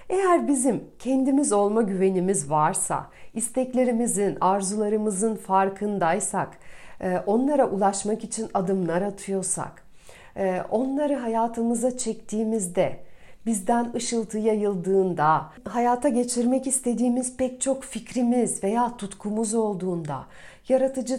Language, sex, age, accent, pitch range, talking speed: Turkish, female, 40-59, native, 185-245 Hz, 85 wpm